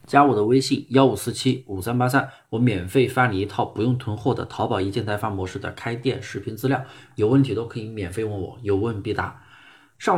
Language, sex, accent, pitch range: Chinese, male, native, 105-135 Hz